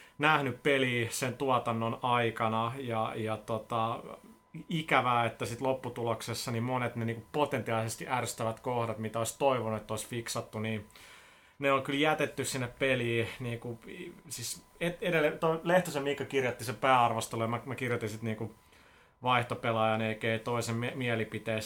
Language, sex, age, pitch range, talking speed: Finnish, male, 30-49, 115-130 Hz, 135 wpm